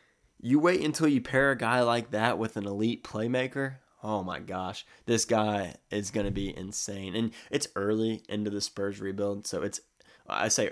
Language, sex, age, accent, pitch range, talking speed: English, male, 20-39, American, 100-115 Hz, 190 wpm